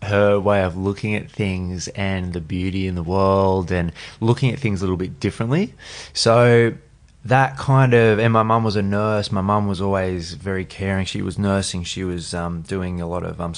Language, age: English, 20-39